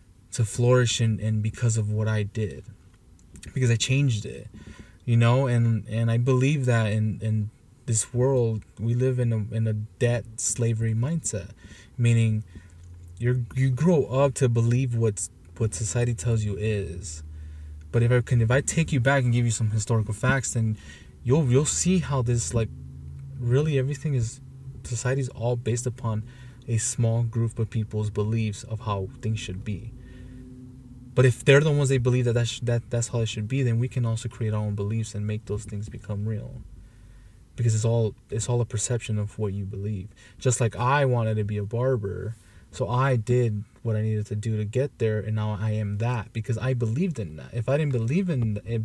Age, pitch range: 20-39, 105-125 Hz